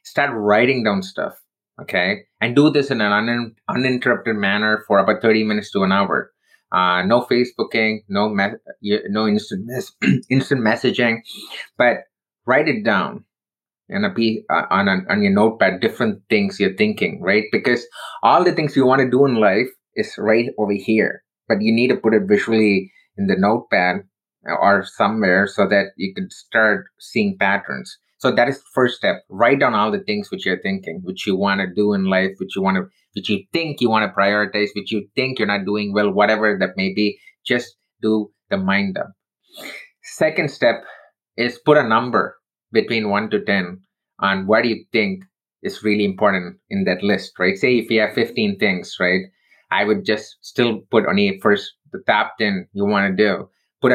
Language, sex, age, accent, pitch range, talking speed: English, male, 30-49, Indian, 100-145 Hz, 185 wpm